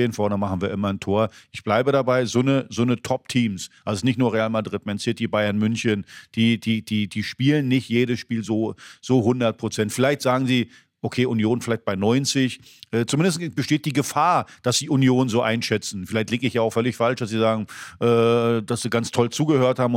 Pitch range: 110-130 Hz